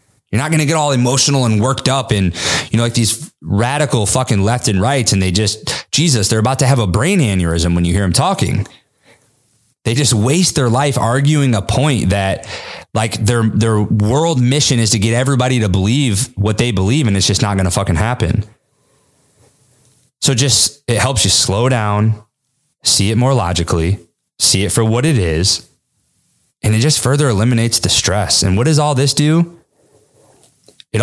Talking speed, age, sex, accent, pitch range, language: 190 wpm, 20-39, male, American, 105-135 Hz, English